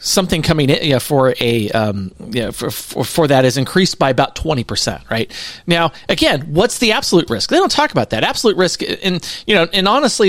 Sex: male